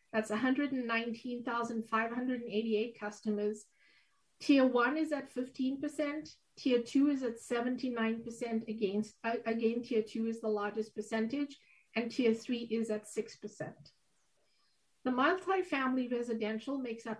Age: 50-69